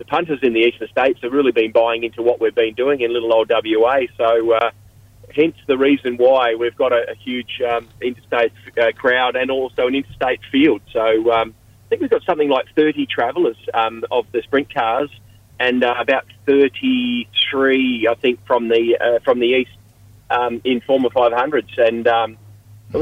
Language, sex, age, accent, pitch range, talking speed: English, male, 30-49, Australian, 115-140 Hz, 185 wpm